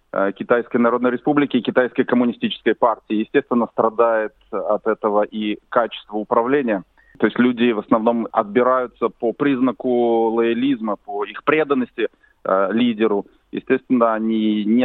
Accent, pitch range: native, 110-130 Hz